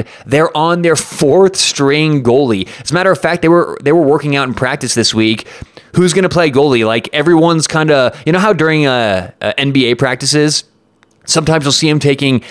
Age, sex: 30-49, male